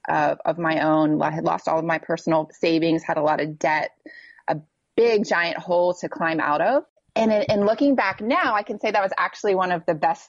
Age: 20-39